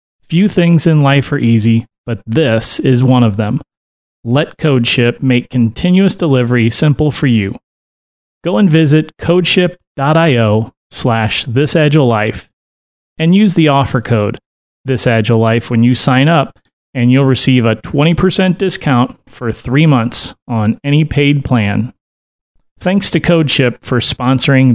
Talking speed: 135 wpm